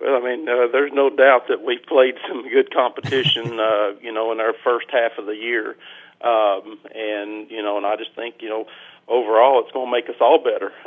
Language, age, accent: English, 50-69, American